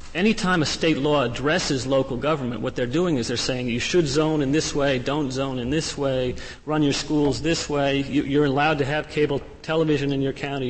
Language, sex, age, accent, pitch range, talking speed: English, male, 40-59, American, 125-150 Hz, 215 wpm